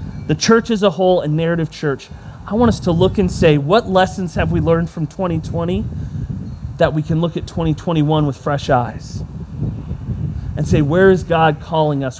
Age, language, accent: 30-49, English, American